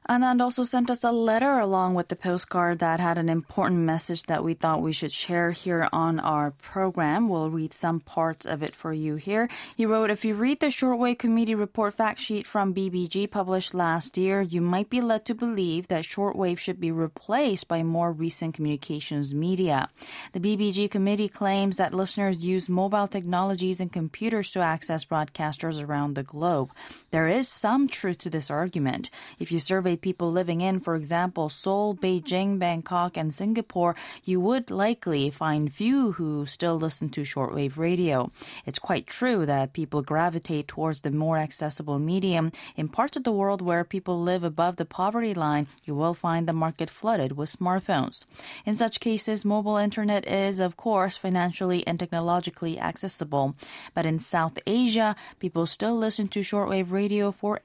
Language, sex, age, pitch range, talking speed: English, female, 20-39, 160-205 Hz, 175 wpm